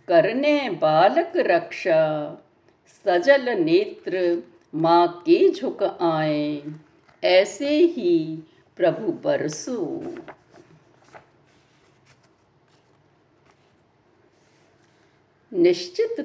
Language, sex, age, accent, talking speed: Hindi, female, 60-79, native, 50 wpm